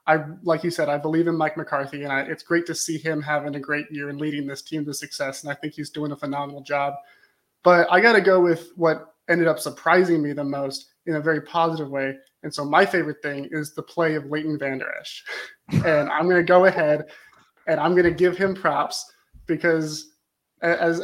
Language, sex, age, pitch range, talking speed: English, male, 20-39, 150-170 Hz, 220 wpm